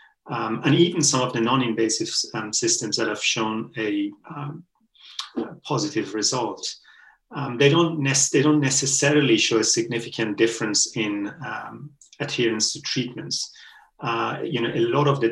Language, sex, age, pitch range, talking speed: English, male, 30-49, 110-145 Hz, 160 wpm